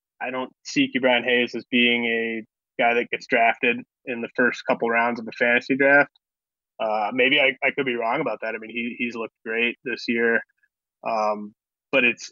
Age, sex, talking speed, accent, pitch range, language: 20-39, male, 205 wpm, American, 115-125 Hz, English